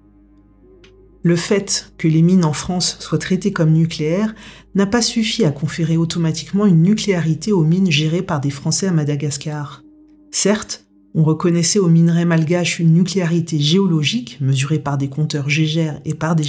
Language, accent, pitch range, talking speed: French, French, 150-190 Hz, 160 wpm